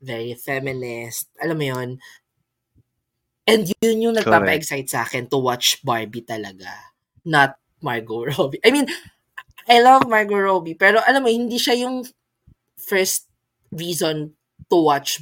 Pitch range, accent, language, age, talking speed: 130-175 Hz, native, Filipino, 20-39, 135 wpm